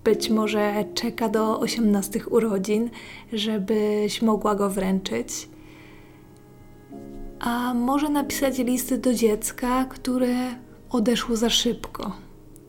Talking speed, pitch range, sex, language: 95 wpm, 215-250 Hz, female, Polish